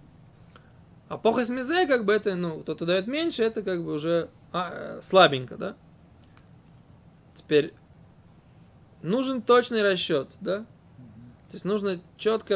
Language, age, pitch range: Russian, 20-39, 175-220 Hz